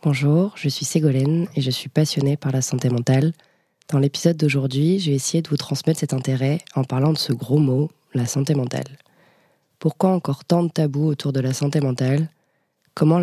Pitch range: 140-160 Hz